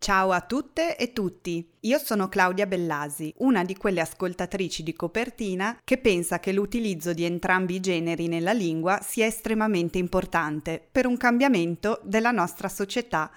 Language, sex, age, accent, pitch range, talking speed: Italian, female, 30-49, native, 165-220 Hz, 155 wpm